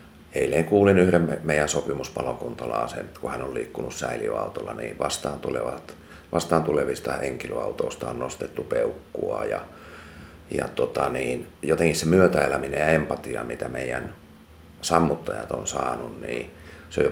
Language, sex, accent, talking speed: Finnish, male, native, 135 wpm